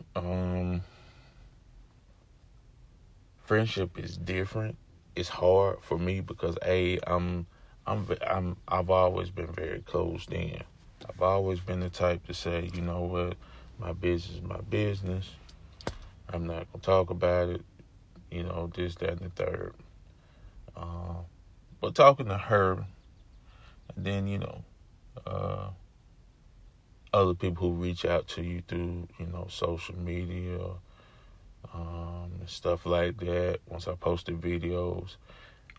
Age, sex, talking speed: 30-49, male, 130 wpm